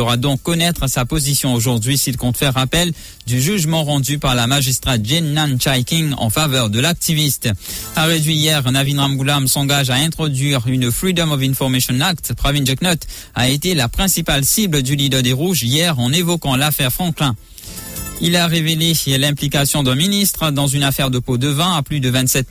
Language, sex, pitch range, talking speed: English, male, 125-155 Hz, 190 wpm